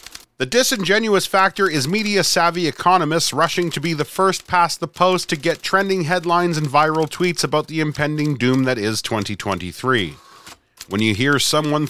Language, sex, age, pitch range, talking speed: English, male, 40-59, 155-195 Hz, 160 wpm